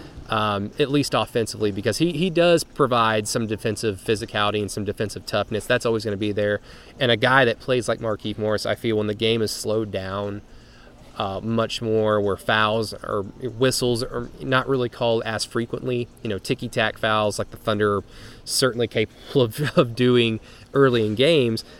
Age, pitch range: 20-39, 105-130 Hz